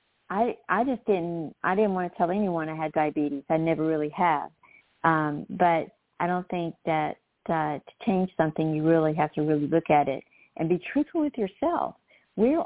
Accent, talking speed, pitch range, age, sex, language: American, 200 wpm, 165-205 Hz, 50-69, female, English